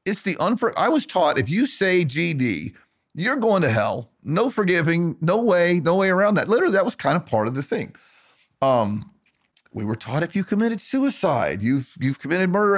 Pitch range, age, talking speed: 110-180 Hz, 40-59, 205 wpm